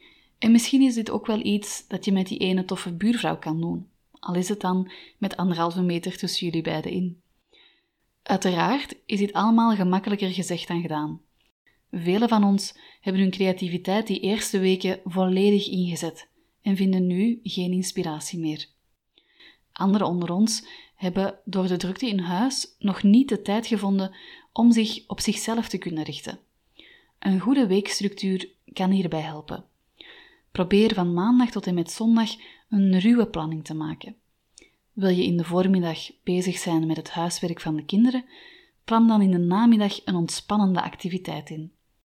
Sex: female